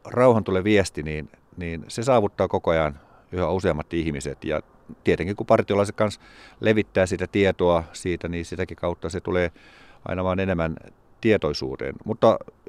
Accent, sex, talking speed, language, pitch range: native, male, 145 wpm, Finnish, 80-100 Hz